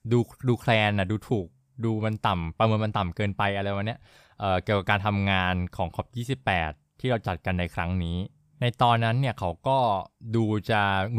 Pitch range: 95-120 Hz